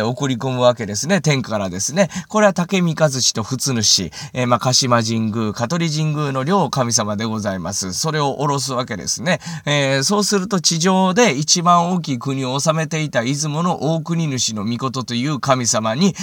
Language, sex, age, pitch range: Japanese, male, 20-39, 125-185 Hz